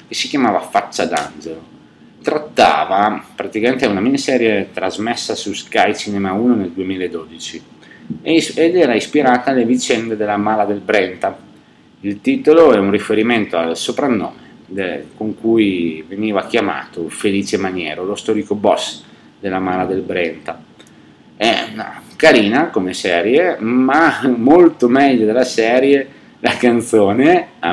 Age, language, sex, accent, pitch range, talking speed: 30-49, Italian, male, native, 95-120 Hz, 125 wpm